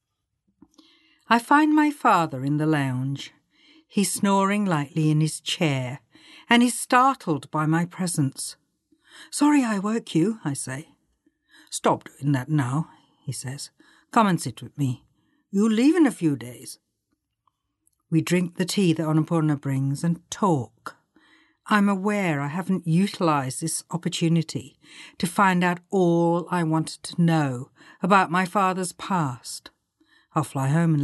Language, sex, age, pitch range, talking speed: English, female, 60-79, 150-200 Hz, 145 wpm